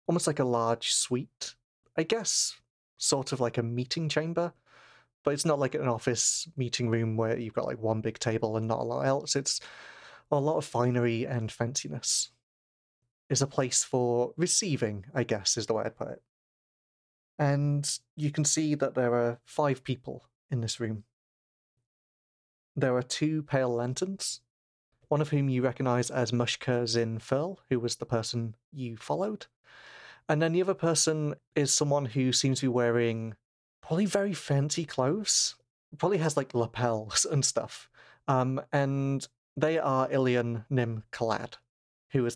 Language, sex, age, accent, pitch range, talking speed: English, male, 30-49, British, 115-145 Hz, 165 wpm